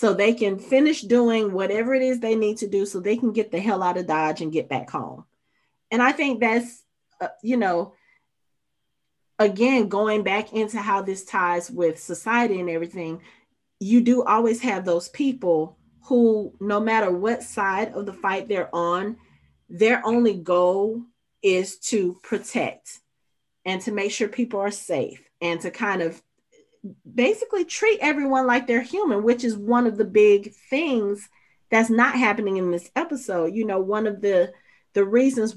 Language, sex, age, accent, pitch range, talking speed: English, female, 30-49, American, 185-235 Hz, 170 wpm